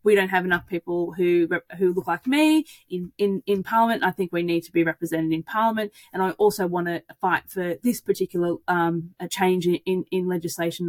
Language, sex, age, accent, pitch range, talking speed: English, female, 20-39, Australian, 185-245 Hz, 215 wpm